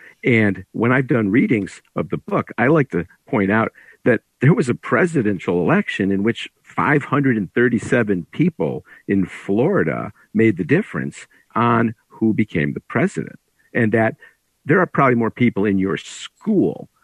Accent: American